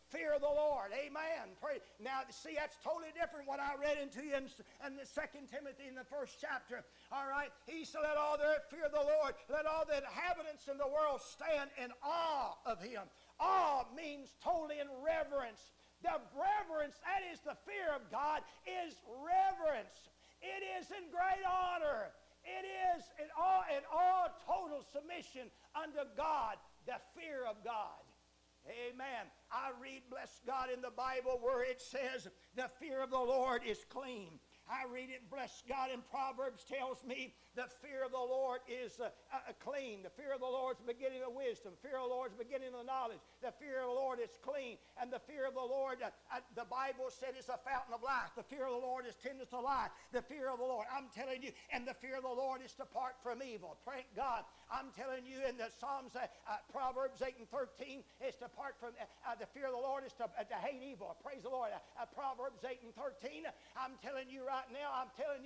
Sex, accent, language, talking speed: male, American, English, 215 wpm